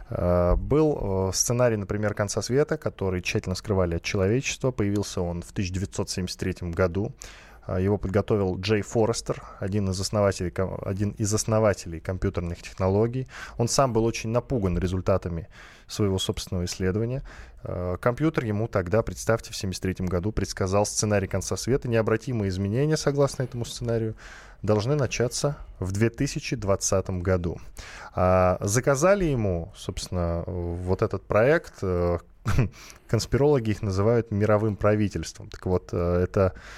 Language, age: Russian, 20-39